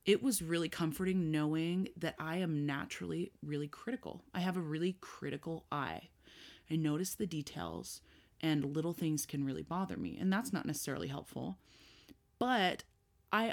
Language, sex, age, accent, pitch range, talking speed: English, female, 20-39, American, 150-190 Hz, 155 wpm